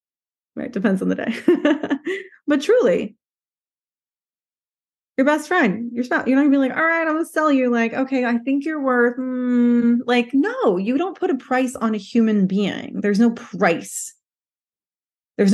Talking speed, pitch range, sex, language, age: 180 wpm, 195-250 Hz, female, English, 30-49